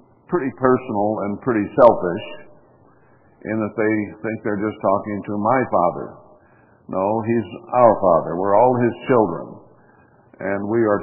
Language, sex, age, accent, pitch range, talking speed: English, male, 60-79, American, 100-115 Hz, 140 wpm